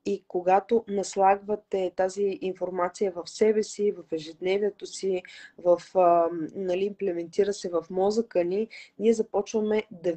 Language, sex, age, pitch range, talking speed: Bulgarian, female, 20-39, 180-215 Hz, 125 wpm